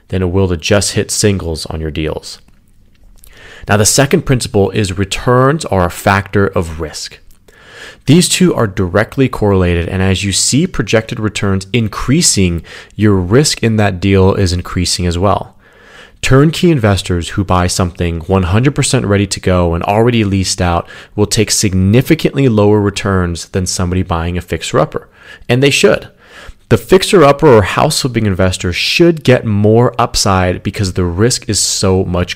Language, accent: English, American